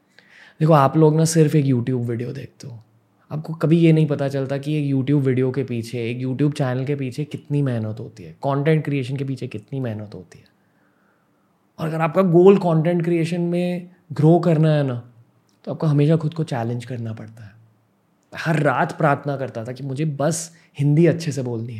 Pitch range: 125-160 Hz